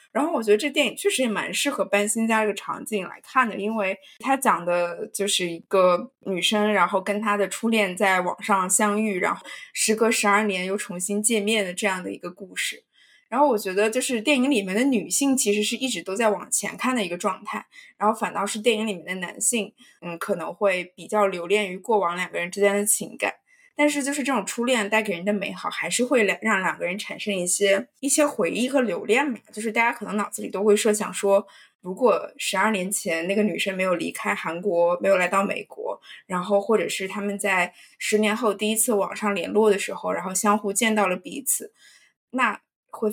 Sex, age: female, 20-39